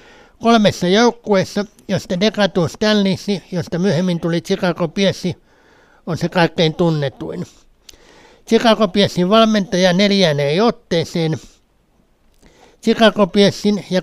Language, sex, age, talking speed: Finnish, male, 60-79, 85 wpm